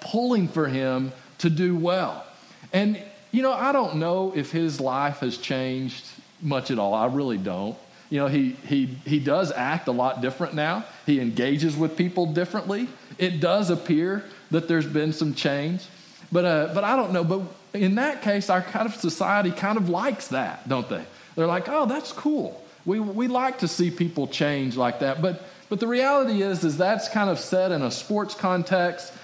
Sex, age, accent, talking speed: male, 40-59, American, 200 wpm